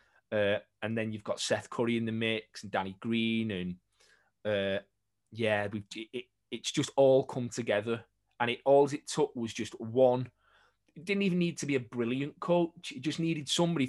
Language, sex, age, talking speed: English, male, 20-39, 195 wpm